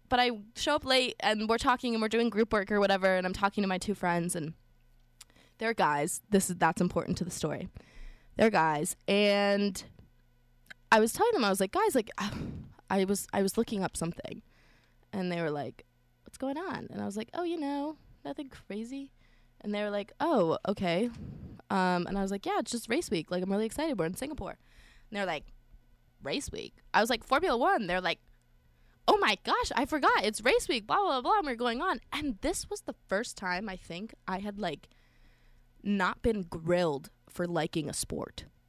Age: 20-39